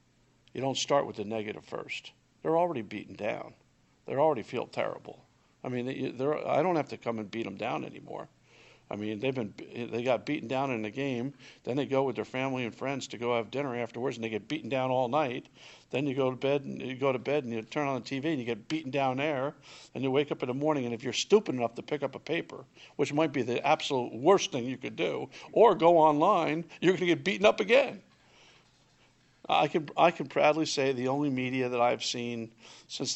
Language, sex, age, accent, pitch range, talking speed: English, male, 50-69, American, 120-150 Hz, 235 wpm